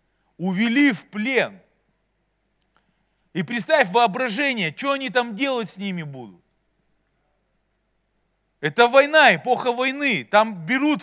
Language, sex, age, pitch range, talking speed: Russian, male, 40-59, 175-255 Hz, 105 wpm